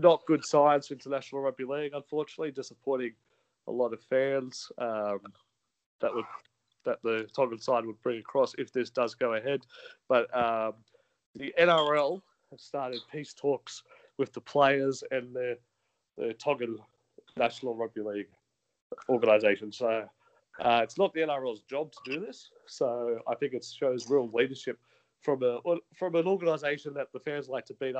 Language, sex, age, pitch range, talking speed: English, male, 30-49, 115-150 Hz, 160 wpm